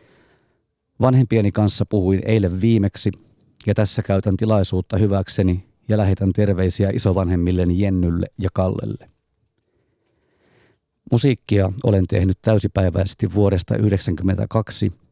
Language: Finnish